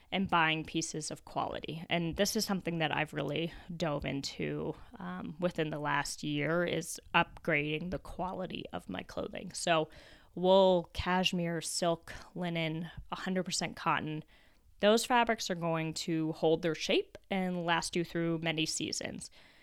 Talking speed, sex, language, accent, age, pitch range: 145 wpm, female, English, American, 10-29, 165-200 Hz